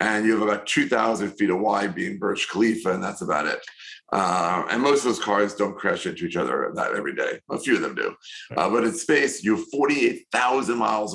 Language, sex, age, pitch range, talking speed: English, male, 50-69, 105-120 Hz, 225 wpm